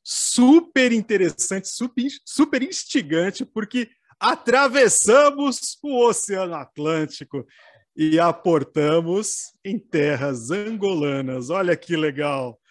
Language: English